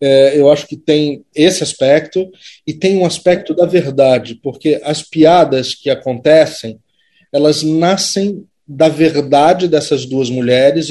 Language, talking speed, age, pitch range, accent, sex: Portuguese, 130 wpm, 20-39, 140-170 Hz, Brazilian, male